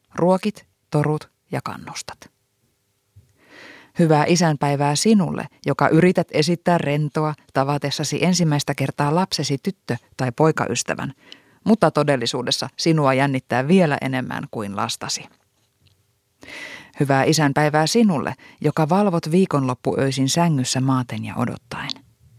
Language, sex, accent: Finnish, female, native